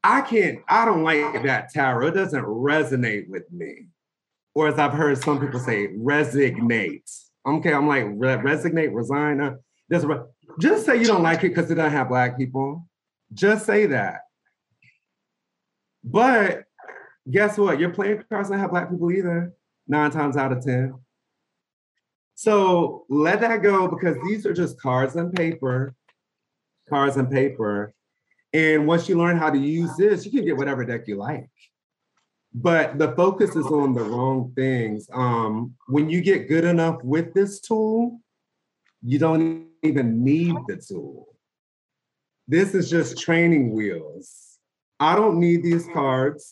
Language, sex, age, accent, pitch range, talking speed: English, male, 30-49, American, 135-175 Hz, 150 wpm